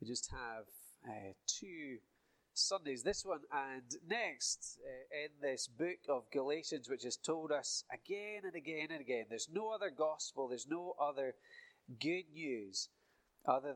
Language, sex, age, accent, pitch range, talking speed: English, male, 30-49, British, 125-170 Hz, 155 wpm